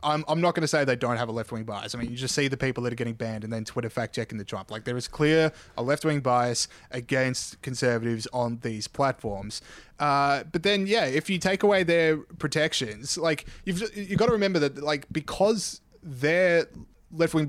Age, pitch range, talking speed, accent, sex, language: 20-39, 125-155 Hz, 215 wpm, Australian, male, English